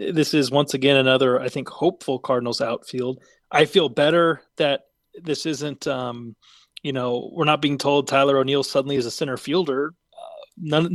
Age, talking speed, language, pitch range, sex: 20-39, 175 wpm, English, 130-150 Hz, male